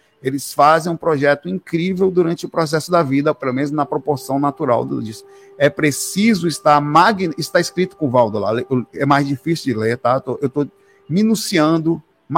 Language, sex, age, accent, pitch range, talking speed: Portuguese, male, 50-69, Brazilian, 135-175 Hz, 170 wpm